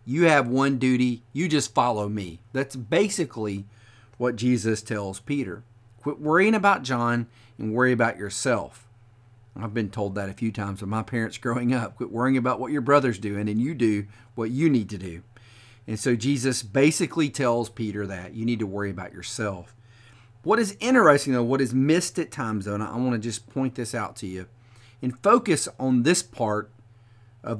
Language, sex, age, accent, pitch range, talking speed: English, male, 40-59, American, 110-130 Hz, 190 wpm